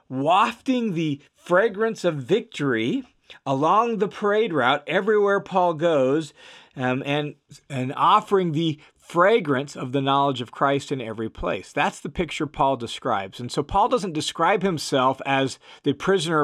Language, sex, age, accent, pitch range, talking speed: English, male, 40-59, American, 130-185 Hz, 145 wpm